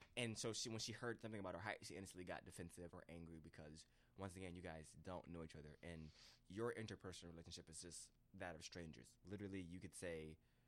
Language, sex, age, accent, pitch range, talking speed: English, male, 20-39, American, 80-100 Hz, 210 wpm